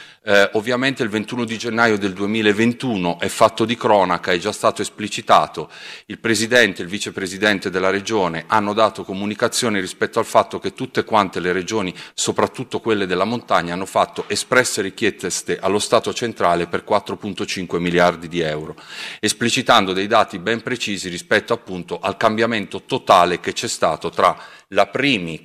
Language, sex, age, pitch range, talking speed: Italian, male, 40-59, 95-115 Hz, 155 wpm